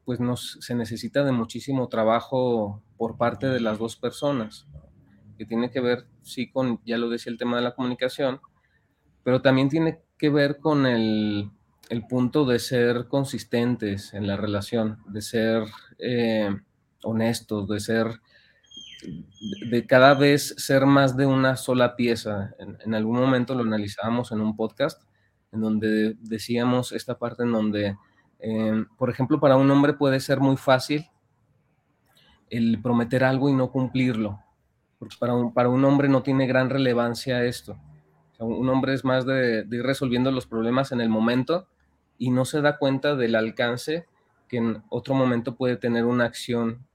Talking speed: 165 wpm